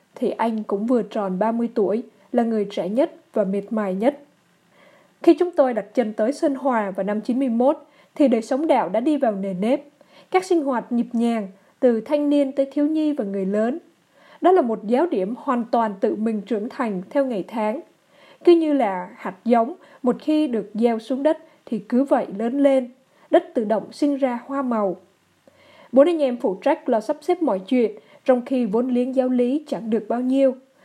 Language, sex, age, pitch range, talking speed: Vietnamese, female, 20-39, 215-280 Hz, 205 wpm